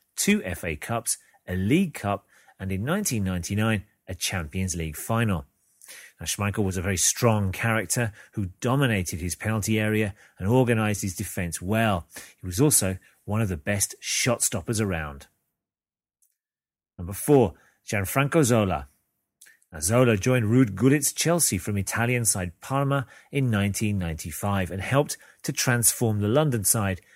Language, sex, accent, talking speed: English, male, British, 135 wpm